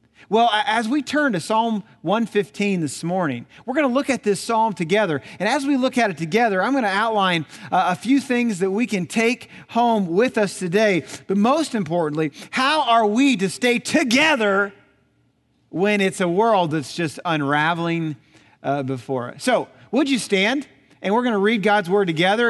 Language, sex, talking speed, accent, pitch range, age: English, male, 185 wpm, American, 150-210 Hz, 40-59